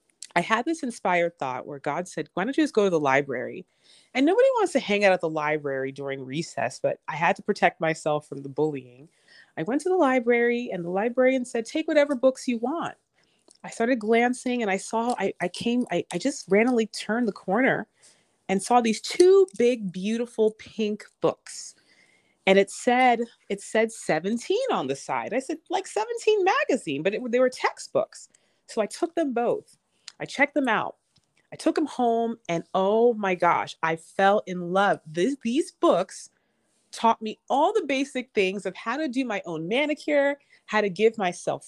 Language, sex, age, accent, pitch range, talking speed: English, female, 30-49, American, 190-280 Hz, 190 wpm